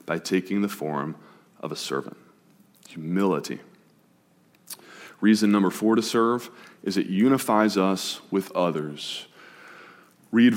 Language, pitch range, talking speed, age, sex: English, 95-120 Hz, 115 wpm, 30-49, male